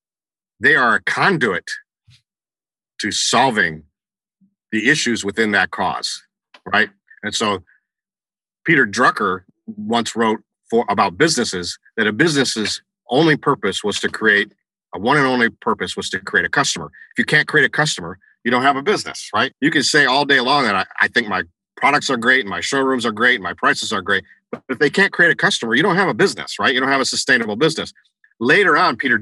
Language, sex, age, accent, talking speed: English, male, 50-69, American, 200 wpm